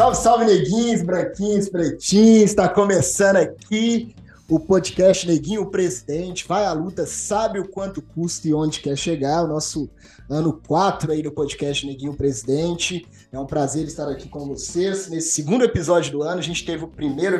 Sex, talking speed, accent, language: male, 170 wpm, Brazilian, Portuguese